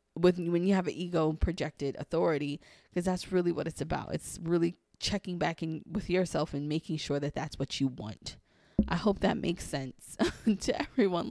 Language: English